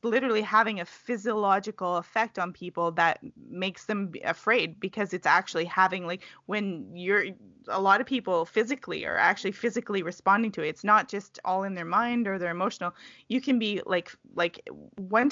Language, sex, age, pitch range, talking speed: English, female, 20-39, 175-215 Hz, 175 wpm